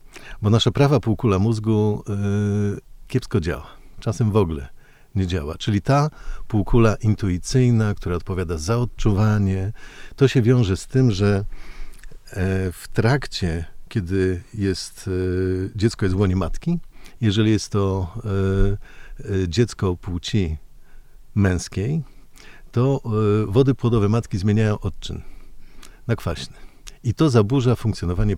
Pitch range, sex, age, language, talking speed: 95-130 Hz, male, 50-69, Polish, 125 wpm